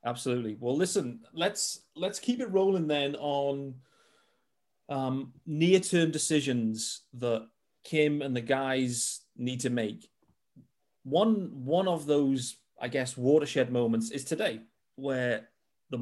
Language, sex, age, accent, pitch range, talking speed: English, male, 30-49, British, 115-150 Hz, 125 wpm